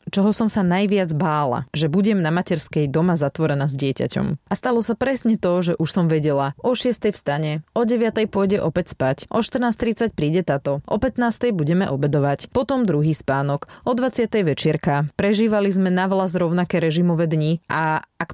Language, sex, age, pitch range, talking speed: Slovak, female, 20-39, 150-195 Hz, 175 wpm